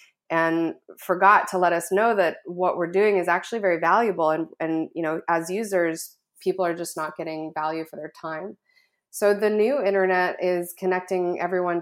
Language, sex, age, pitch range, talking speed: English, female, 20-39, 170-200 Hz, 185 wpm